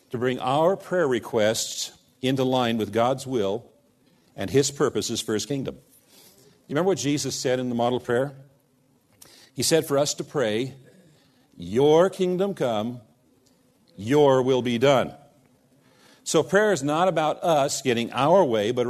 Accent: American